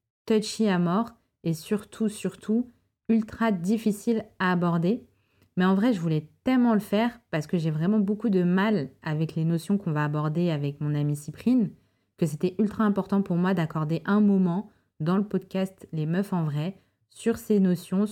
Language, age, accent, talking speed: French, 20-39, French, 180 wpm